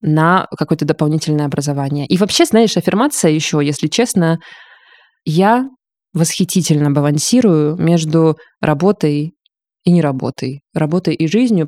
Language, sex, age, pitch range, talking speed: Russian, female, 20-39, 155-185 Hz, 115 wpm